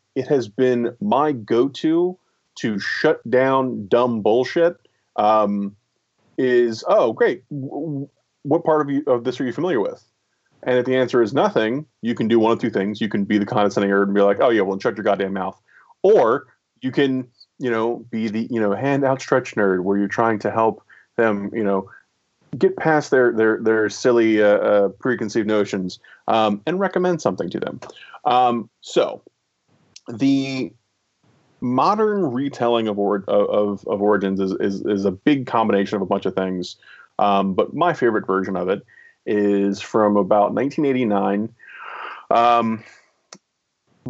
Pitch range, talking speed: 100-130 Hz, 165 wpm